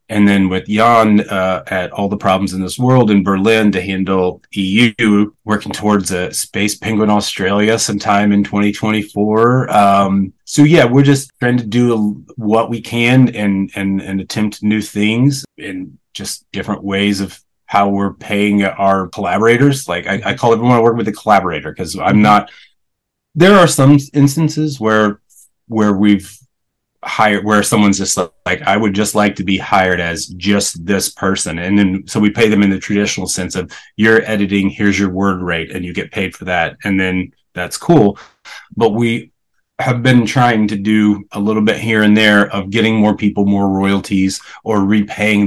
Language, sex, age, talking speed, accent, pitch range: English, male, 30-49, 180 wpm, American, 100-115 Hz